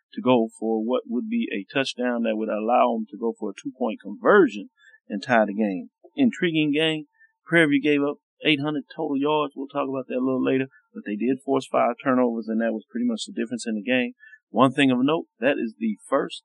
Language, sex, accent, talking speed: English, male, American, 225 wpm